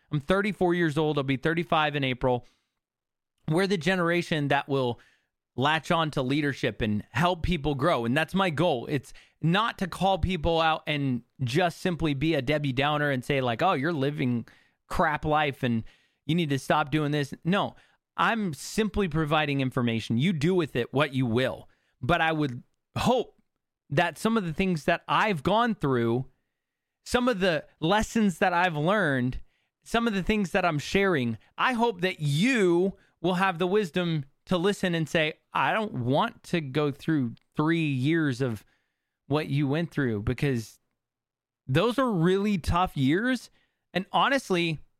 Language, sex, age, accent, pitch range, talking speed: English, male, 30-49, American, 140-185 Hz, 170 wpm